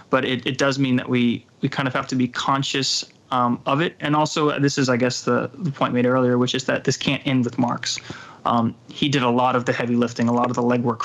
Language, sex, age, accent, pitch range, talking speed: English, male, 20-39, American, 120-140 Hz, 270 wpm